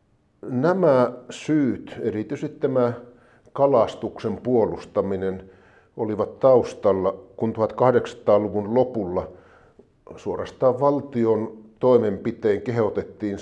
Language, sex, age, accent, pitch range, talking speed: Finnish, male, 50-69, native, 105-125 Hz, 65 wpm